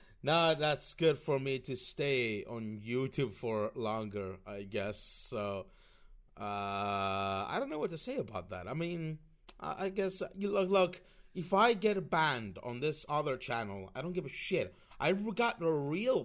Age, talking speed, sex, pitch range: 30-49, 175 wpm, male, 115-175 Hz